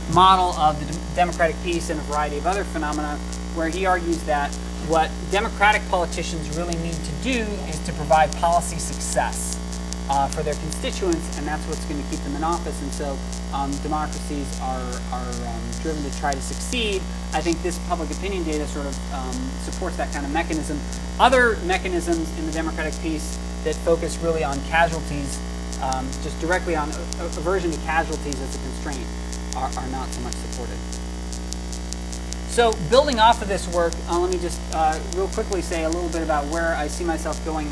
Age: 30-49